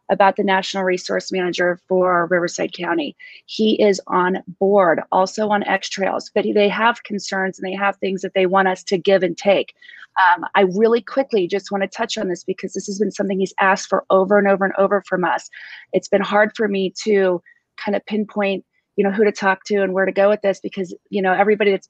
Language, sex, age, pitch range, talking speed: English, female, 30-49, 185-205 Hz, 225 wpm